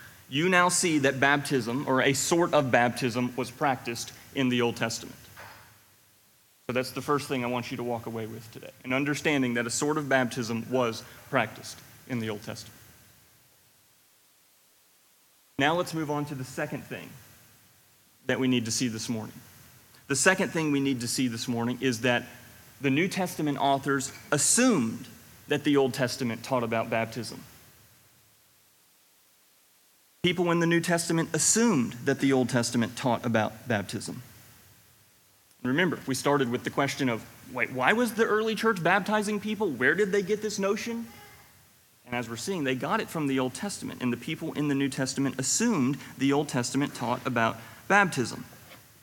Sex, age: male, 30-49